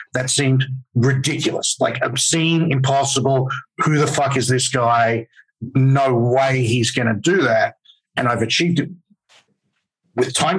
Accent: Australian